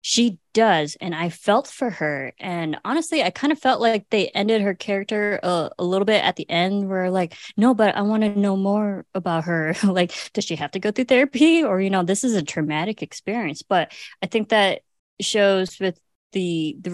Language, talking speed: English, 215 wpm